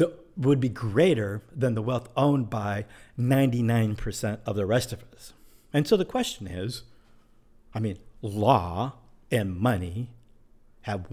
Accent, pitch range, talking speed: American, 105-125 Hz, 135 wpm